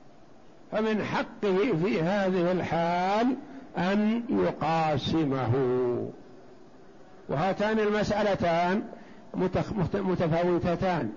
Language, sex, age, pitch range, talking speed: Arabic, male, 60-79, 180-220 Hz, 55 wpm